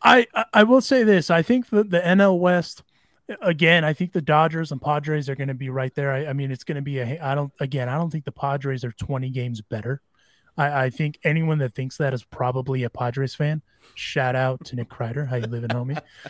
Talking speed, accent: 240 wpm, American